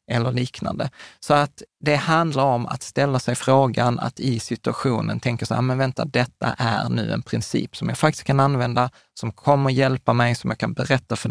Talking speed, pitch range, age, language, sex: 200 wpm, 120-140 Hz, 20-39, Swedish, male